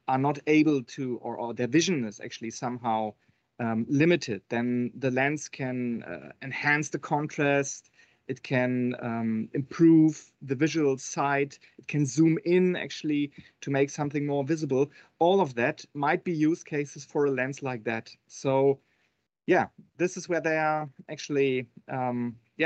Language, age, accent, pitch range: English, 30-49, German, 130-165 Hz